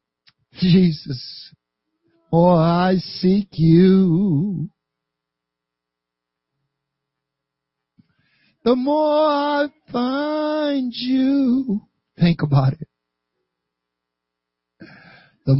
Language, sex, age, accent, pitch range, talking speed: English, male, 60-79, American, 150-195 Hz, 60 wpm